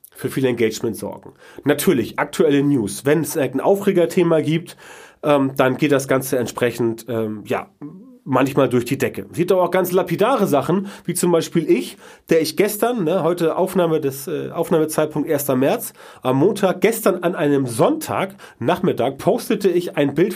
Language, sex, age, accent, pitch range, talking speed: German, male, 30-49, German, 130-175 Hz, 160 wpm